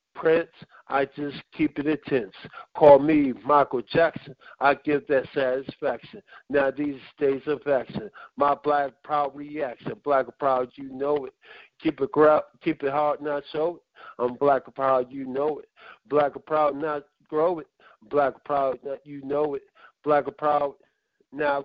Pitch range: 140-155 Hz